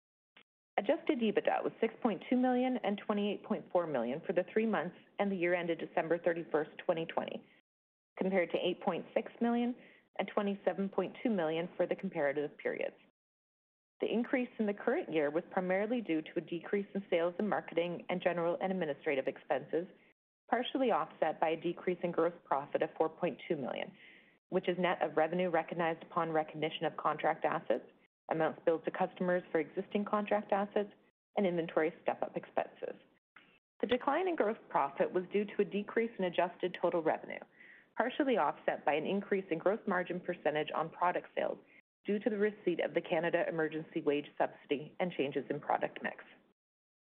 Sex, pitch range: female, 170-210 Hz